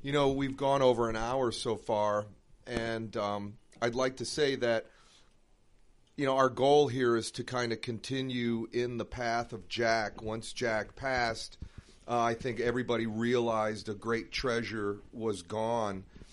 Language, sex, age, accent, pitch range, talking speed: English, male, 40-59, American, 115-135 Hz, 160 wpm